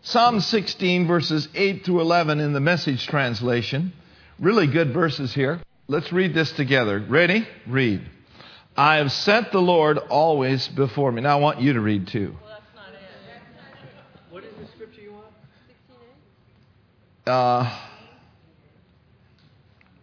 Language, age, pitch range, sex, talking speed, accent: English, 50-69, 130-175 Hz, male, 135 wpm, American